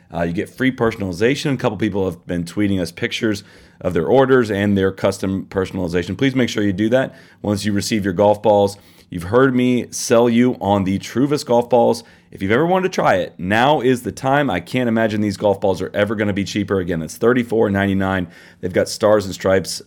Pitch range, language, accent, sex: 90-120 Hz, English, American, male